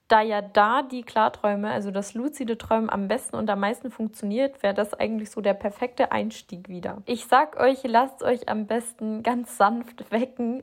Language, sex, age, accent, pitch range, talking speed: German, female, 20-39, German, 205-240 Hz, 185 wpm